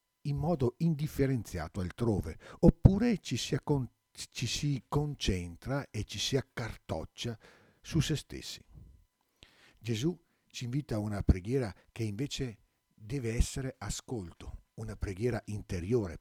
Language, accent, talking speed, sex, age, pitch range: Italian, native, 105 wpm, male, 50-69, 90-130 Hz